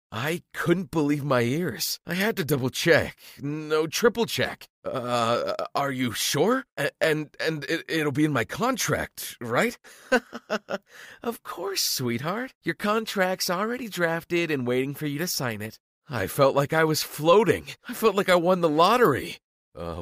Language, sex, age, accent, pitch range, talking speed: English, male, 40-59, American, 120-165 Hz, 155 wpm